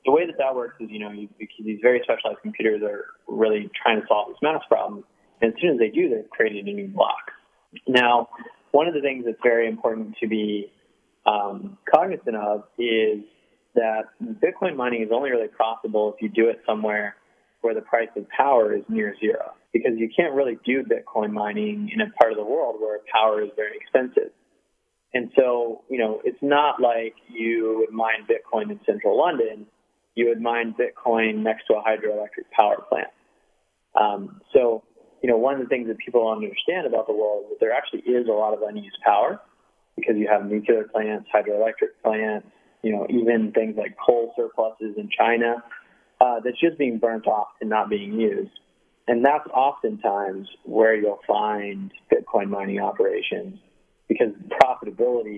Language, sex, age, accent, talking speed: English, male, 20-39, American, 185 wpm